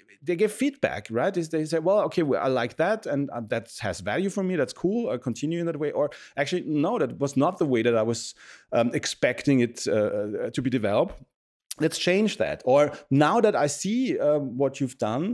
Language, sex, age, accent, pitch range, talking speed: English, male, 40-59, German, 120-170 Hz, 210 wpm